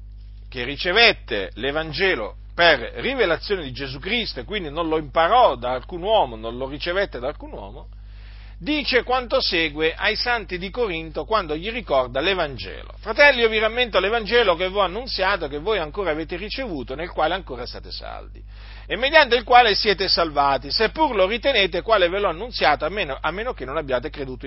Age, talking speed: 50-69, 175 wpm